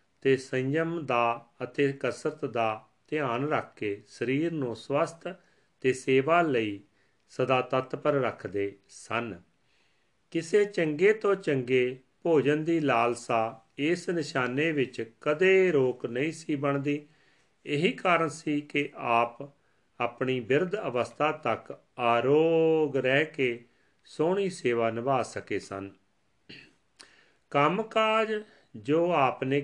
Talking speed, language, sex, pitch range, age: 105 wpm, Punjabi, male, 115-155 Hz, 40-59